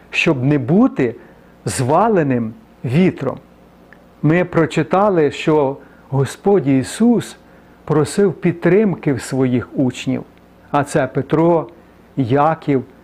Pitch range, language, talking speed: 135-180 Hz, Ukrainian, 85 wpm